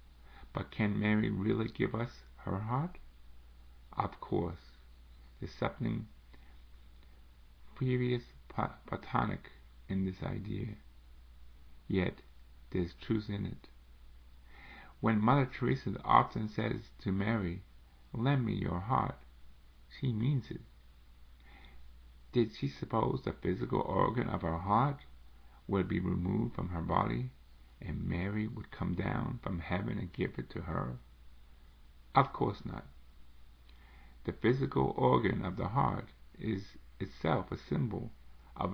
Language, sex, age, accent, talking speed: English, male, 50-69, American, 120 wpm